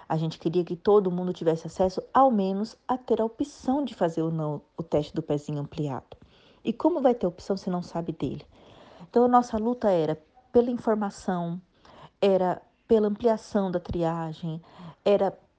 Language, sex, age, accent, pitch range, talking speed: Portuguese, female, 40-59, Brazilian, 160-205 Hz, 175 wpm